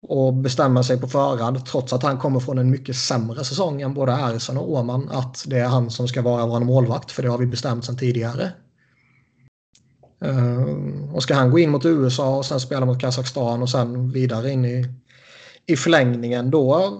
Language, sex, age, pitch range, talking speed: Swedish, male, 30-49, 125-140 Hz, 195 wpm